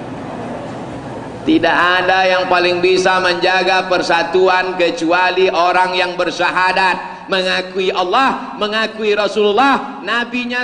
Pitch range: 185-300 Hz